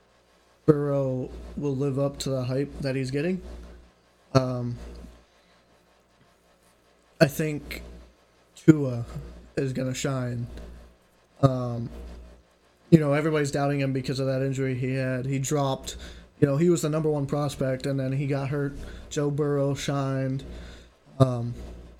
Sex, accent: male, American